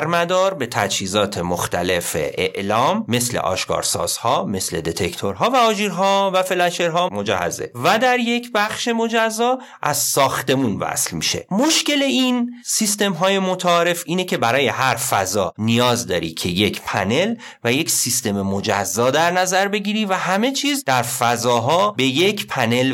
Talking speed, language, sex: 145 wpm, Persian, male